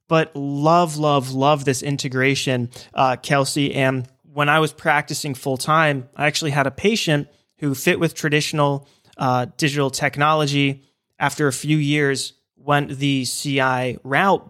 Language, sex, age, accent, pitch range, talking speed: English, male, 20-39, American, 135-165 Hz, 140 wpm